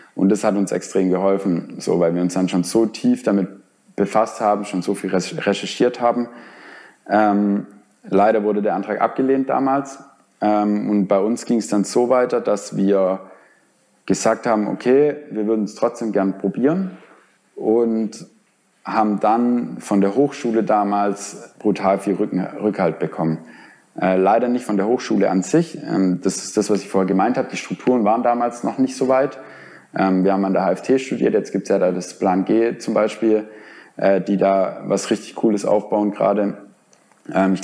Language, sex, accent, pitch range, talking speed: German, male, German, 95-115 Hz, 175 wpm